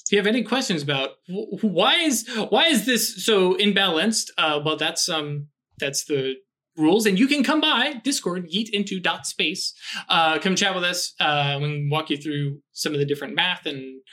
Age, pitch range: 20-39, 145-190 Hz